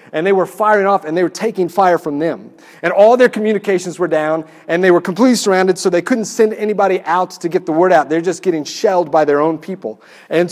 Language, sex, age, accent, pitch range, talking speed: English, male, 40-59, American, 170-220 Hz, 245 wpm